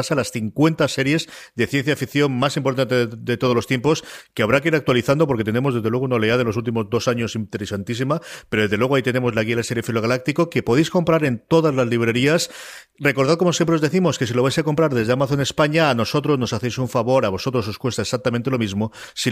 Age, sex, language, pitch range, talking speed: 40-59, male, Spanish, 110-135 Hz, 240 wpm